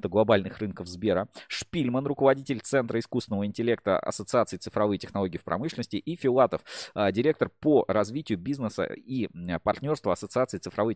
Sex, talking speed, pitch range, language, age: male, 125 wpm, 95-125 Hz, Russian, 20-39